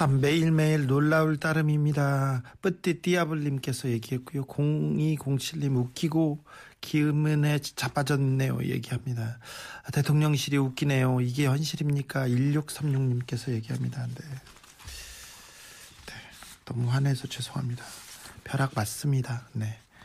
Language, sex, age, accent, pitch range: Korean, male, 40-59, native, 115-140 Hz